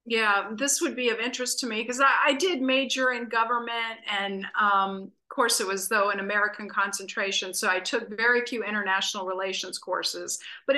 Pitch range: 195-240 Hz